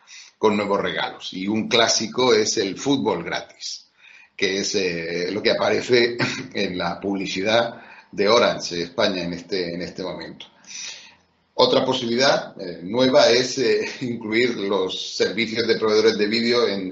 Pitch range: 100-120 Hz